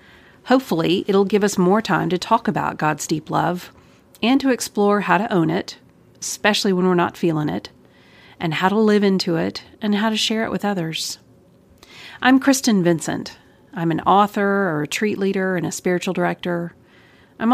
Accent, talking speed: American, 180 wpm